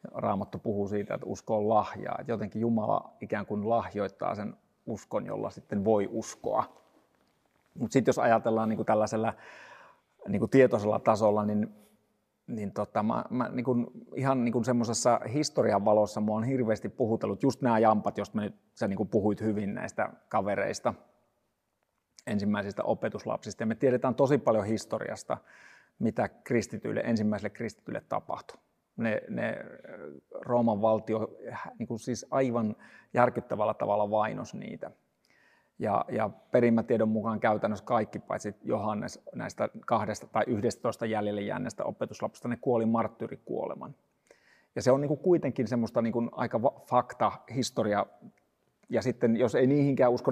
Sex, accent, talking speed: male, native, 130 wpm